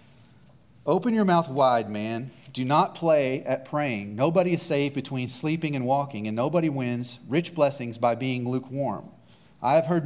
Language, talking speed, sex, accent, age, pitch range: English, 165 wpm, male, American, 40-59, 125-165 Hz